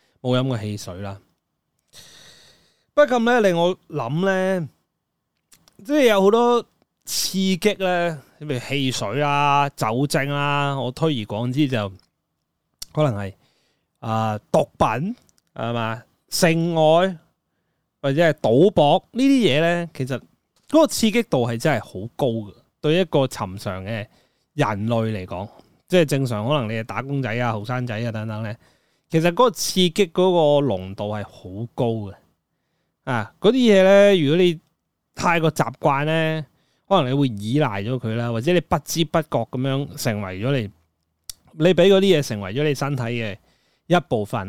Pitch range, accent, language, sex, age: 115-165 Hz, native, Chinese, male, 20-39